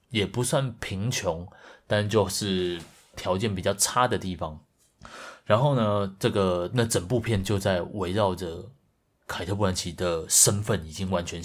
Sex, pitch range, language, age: male, 90-125 Hz, Chinese, 30-49